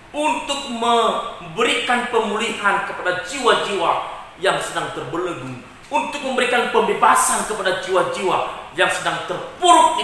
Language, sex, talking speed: Indonesian, male, 100 wpm